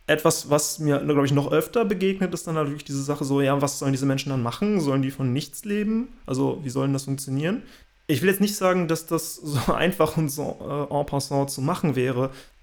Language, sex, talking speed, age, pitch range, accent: German, male, 230 wpm, 30-49, 140-165 Hz, German